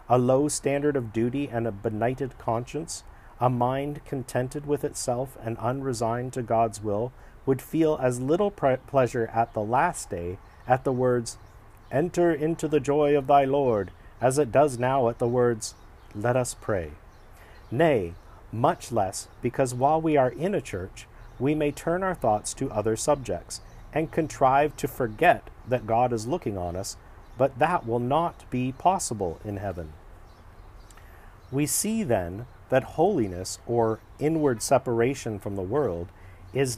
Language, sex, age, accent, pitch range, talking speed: English, male, 40-59, American, 100-140 Hz, 155 wpm